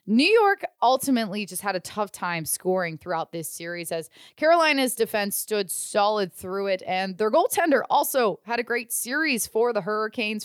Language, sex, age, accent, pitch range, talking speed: English, female, 20-39, American, 200-270 Hz, 170 wpm